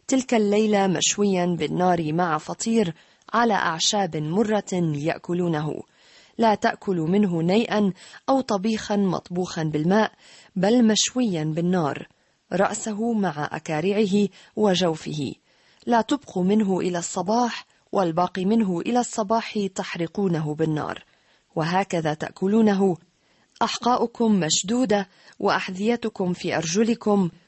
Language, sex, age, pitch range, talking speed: Arabic, female, 40-59, 170-220 Hz, 95 wpm